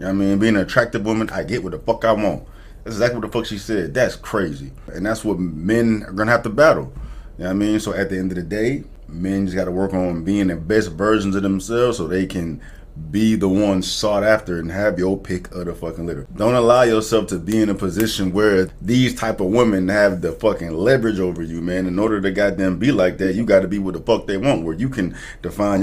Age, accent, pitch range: 30-49, American, 90-110 Hz